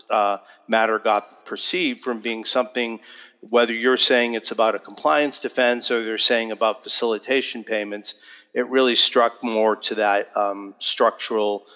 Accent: American